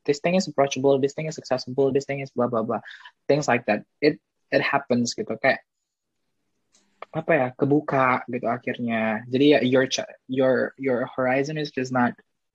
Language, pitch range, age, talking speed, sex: Indonesian, 125-170 Hz, 20-39, 165 wpm, male